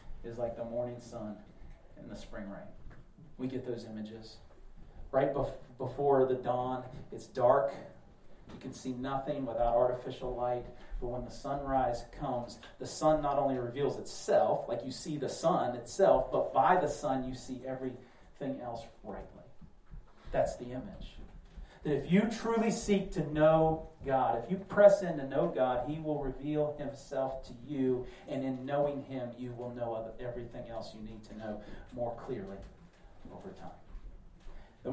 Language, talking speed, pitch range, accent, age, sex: English, 160 wpm, 120-155 Hz, American, 40-59, male